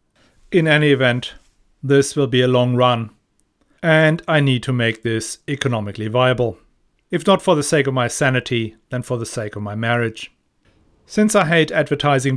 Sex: male